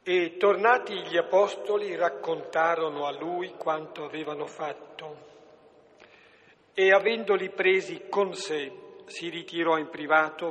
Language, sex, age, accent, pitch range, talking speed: Italian, male, 50-69, native, 155-185 Hz, 110 wpm